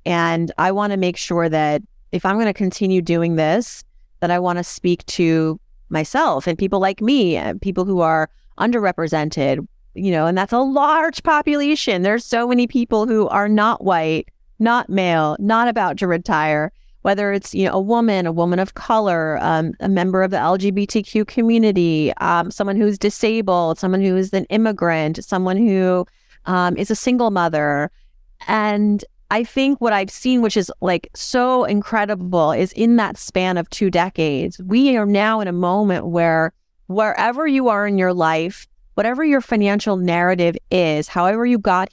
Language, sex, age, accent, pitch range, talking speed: English, female, 30-49, American, 170-215 Hz, 175 wpm